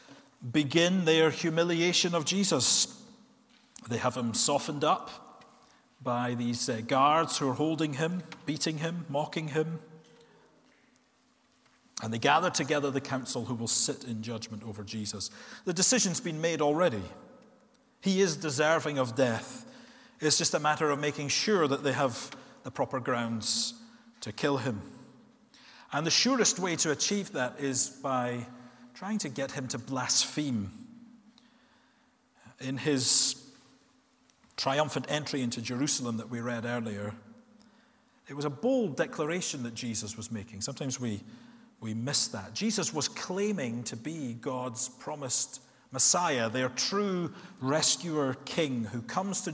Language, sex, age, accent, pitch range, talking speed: English, male, 40-59, British, 125-185 Hz, 140 wpm